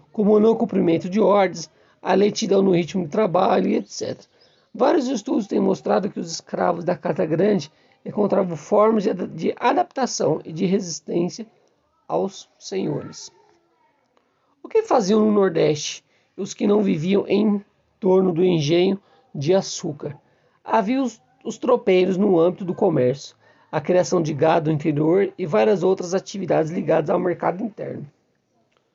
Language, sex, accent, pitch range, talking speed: Portuguese, male, Brazilian, 180-225 Hz, 145 wpm